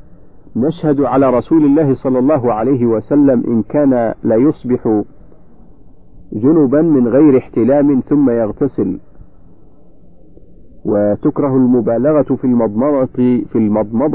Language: Arabic